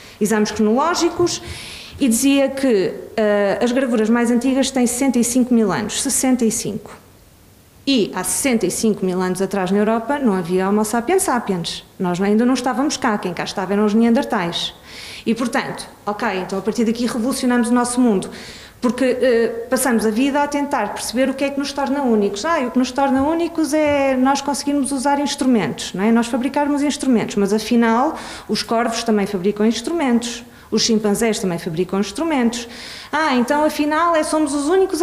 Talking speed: 170 wpm